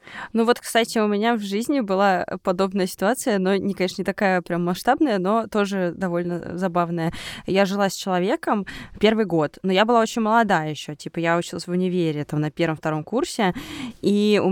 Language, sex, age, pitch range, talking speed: Russian, female, 20-39, 180-245 Hz, 180 wpm